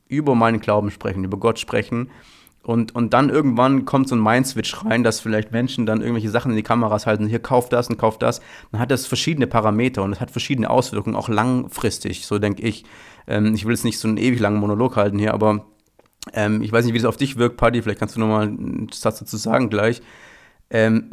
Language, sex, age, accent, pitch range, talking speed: German, male, 30-49, German, 105-120 Hz, 230 wpm